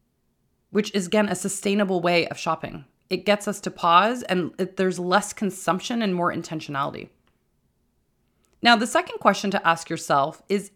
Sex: female